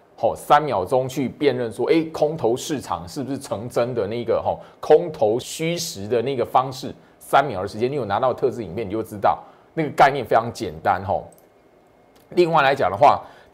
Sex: male